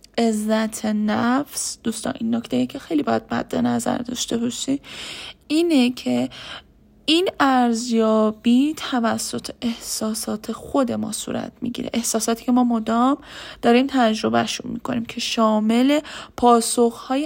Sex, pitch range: female, 225-260 Hz